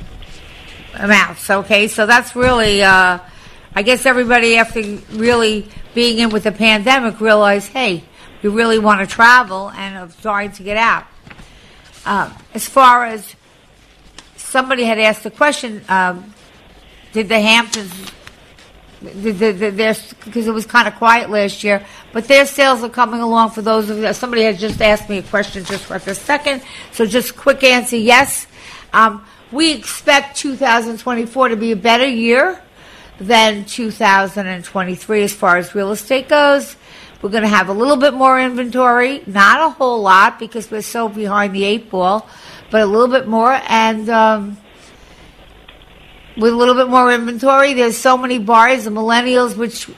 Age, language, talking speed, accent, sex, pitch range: 60-79, English, 165 wpm, American, female, 205-245 Hz